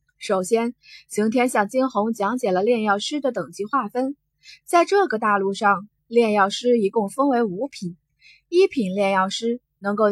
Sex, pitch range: female, 195-260 Hz